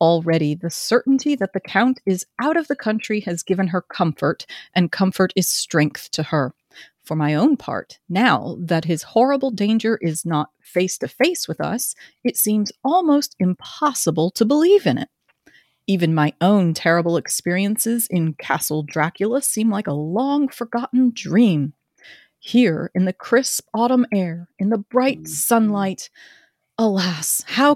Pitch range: 160-225 Hz